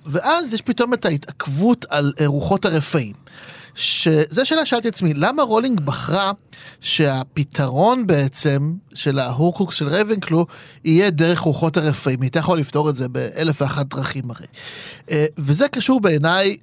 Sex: male